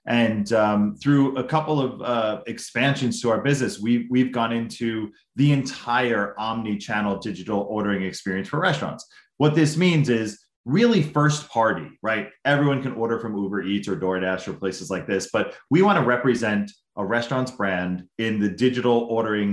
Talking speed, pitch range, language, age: 165 wpm, 100-135 Hz, English, 30-49